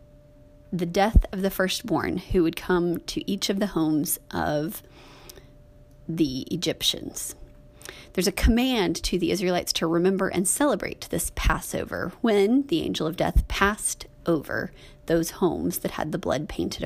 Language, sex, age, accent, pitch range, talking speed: English, female, 30-49, American, 170-230 Hz, 150 wpm